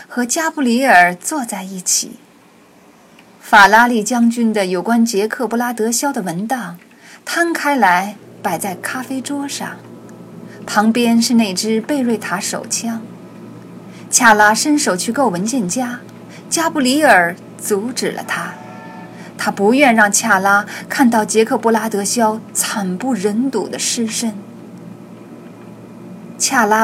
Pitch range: 205-255 Hz